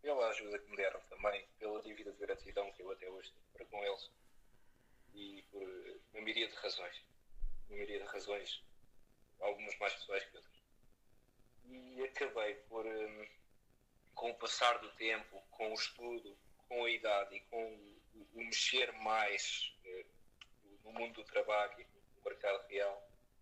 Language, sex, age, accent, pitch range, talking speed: Portuguese, male, 20-39, Portuguese, 110-130 Hz, 150 wpm